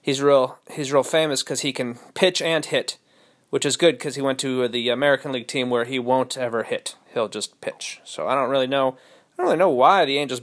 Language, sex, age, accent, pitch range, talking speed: English, male, 30-49, American, 135-190 Hz, 240 wpm